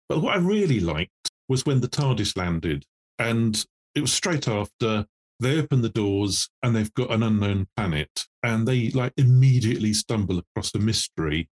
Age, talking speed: 40-59, 170 wpm